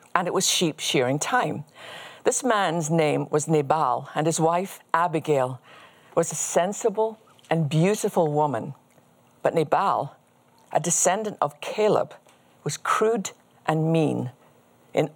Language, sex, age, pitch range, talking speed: English, female, 50-69, 145-190 Hz, 125 wpm